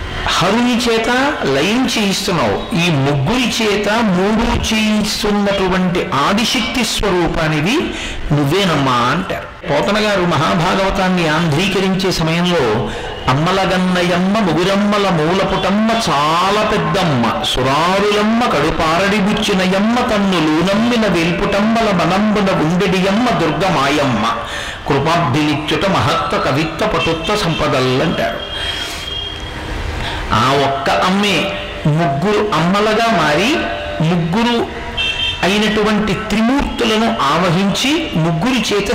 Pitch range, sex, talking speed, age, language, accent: 160-210 Hz, male, 75 wpm, 60-79, Telugu, native